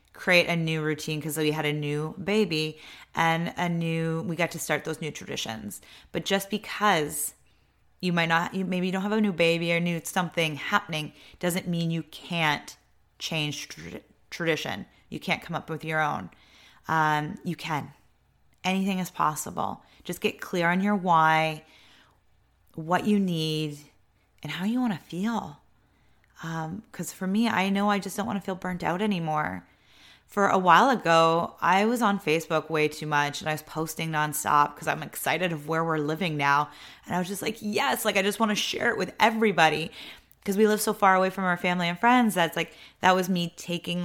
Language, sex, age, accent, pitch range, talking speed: English, female, 30-49, American, 155-195 Hz, 190 wpm